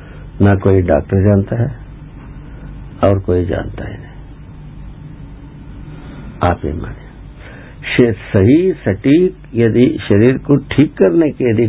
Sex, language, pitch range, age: male, Hindi, 100-145 Hz, 60-79